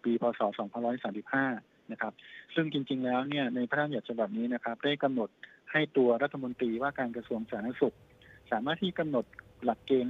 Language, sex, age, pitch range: Thai, male, 20-39, 115-140 Hz